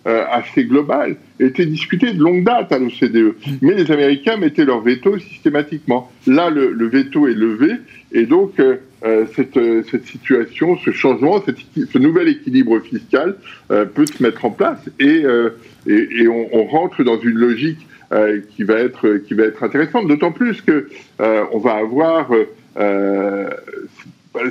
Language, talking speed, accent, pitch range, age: French, 165 wpm, French, 120-200 Hz, 50-69